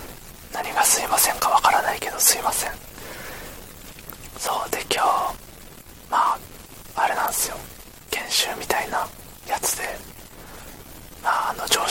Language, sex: Japanese, male